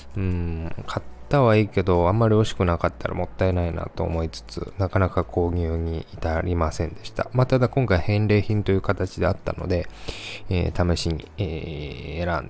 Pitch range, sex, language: 85-110 Hz, male, Japanese